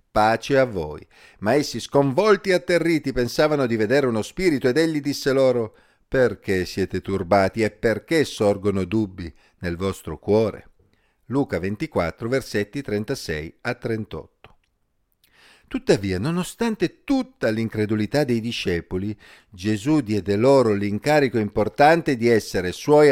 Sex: male